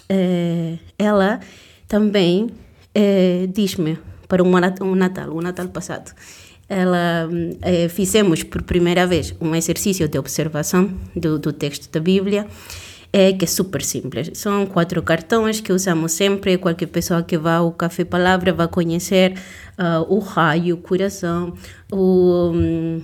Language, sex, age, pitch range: Portuguese, female, 30-49, 170-215 Hz